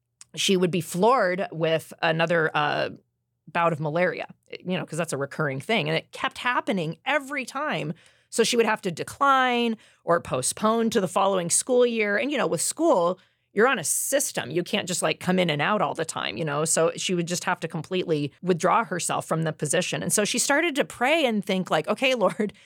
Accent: American